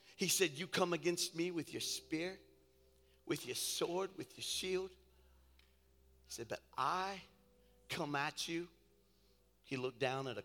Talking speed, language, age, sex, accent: 155 wpm, English, 50-69, male, American